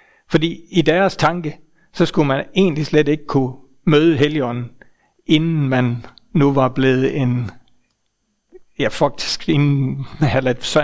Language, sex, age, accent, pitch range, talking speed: Danish, male, 60-79, native, 135-175 Hz, 135 wpm